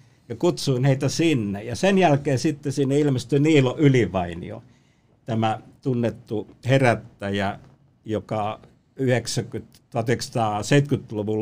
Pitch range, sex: 110-135 Hz, male